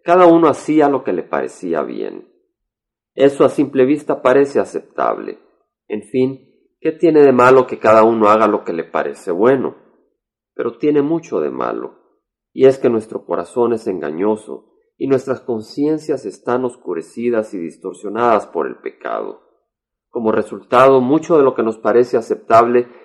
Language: Spanish